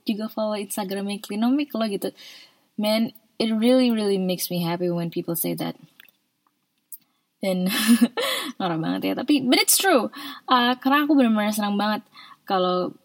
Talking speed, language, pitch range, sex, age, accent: 145 wpm, Indonesian, 180-225 Hz, female, 20-39, native